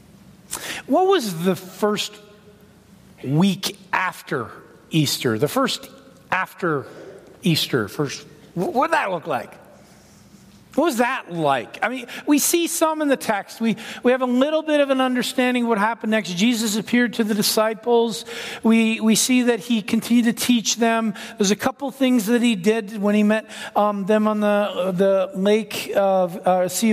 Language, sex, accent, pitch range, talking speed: English, male, American, 190-240 Hz, 165 wpm